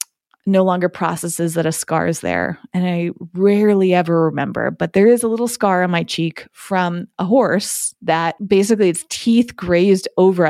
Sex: female